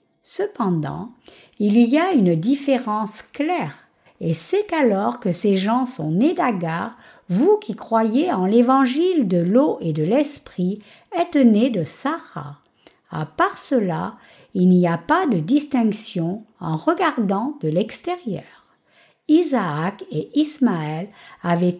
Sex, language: female, French